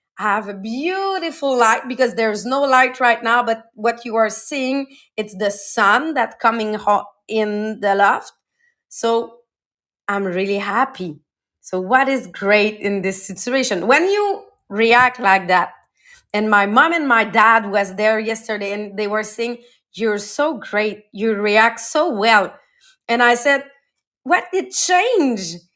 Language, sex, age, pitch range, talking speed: English, female, 30-49, 210-275 Hz, 155 wpm